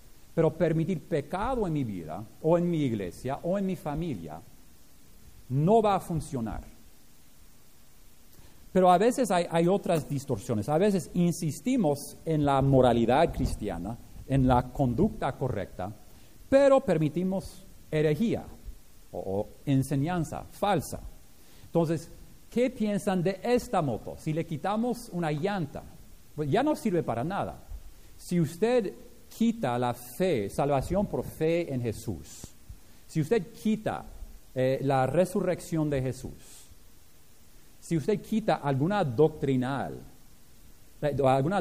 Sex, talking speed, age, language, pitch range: male, 120 wpm, 50-69, Spanish, 120-180 Hz